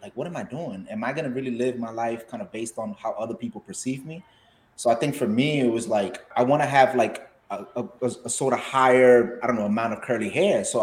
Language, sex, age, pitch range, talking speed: English, male, 20-39, 115-145 Hz, 270 wpm